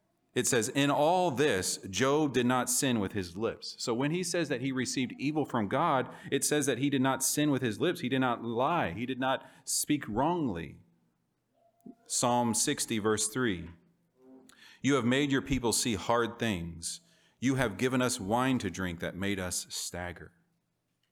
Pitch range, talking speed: 100-135 Hz, 180 wpm